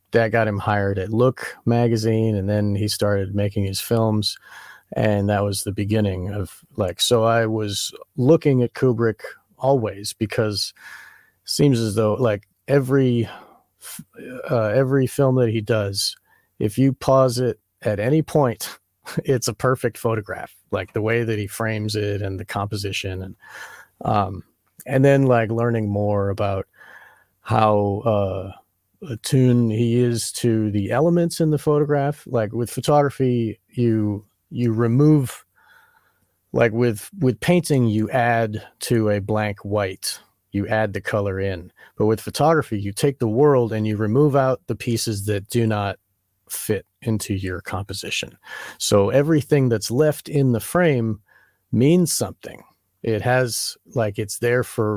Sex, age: male, 40-59